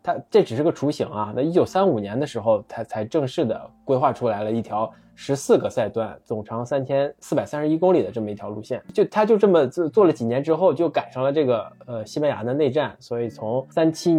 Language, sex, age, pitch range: Chinese, male, 20-39, 110-140 Hz